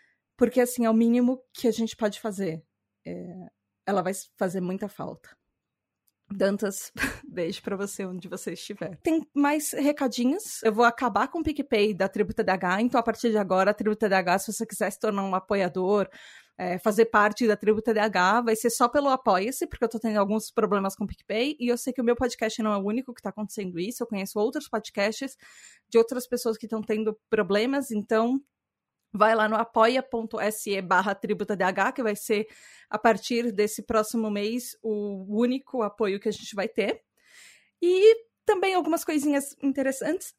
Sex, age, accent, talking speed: female, 20-39, Brazilian, 180 wpm